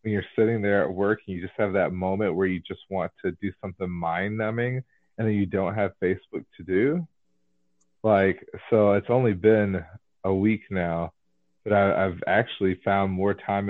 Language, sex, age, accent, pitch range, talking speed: English, male, 30-49, American, 95-110 Hz, 195 wpm